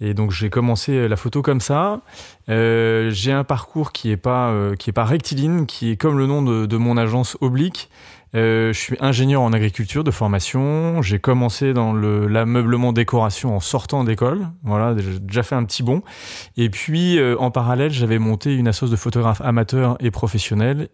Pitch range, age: 110-130 Hz, 30-49